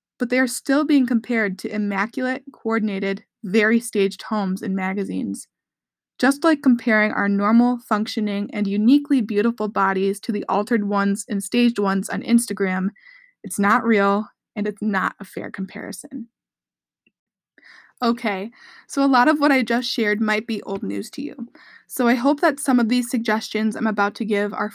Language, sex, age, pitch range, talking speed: English, female, 20-39, 205-245 Hz, 170 wpm